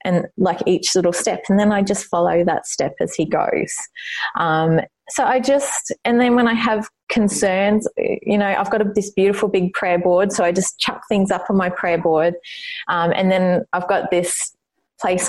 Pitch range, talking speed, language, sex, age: 170-215 Hz, 200 wpm, English, female, 20-39